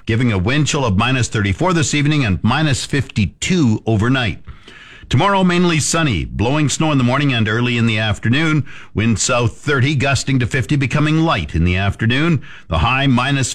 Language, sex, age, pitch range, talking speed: English, male, 50-69, 110-145 Hz, 175 wpm